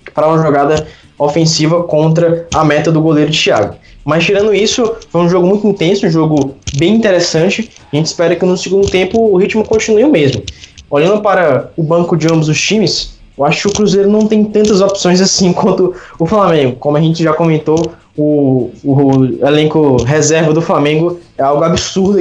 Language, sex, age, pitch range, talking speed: Portuguese, male, 10-29, 140-175 Hz, 185 wpm